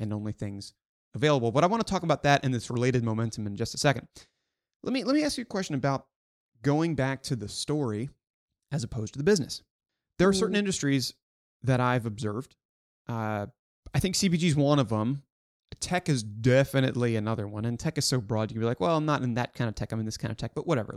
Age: 30-49